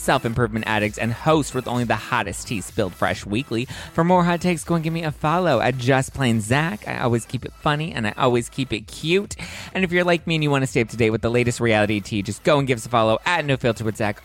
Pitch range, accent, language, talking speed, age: 110-145 Hz, American, English, 280 wpm, 20-39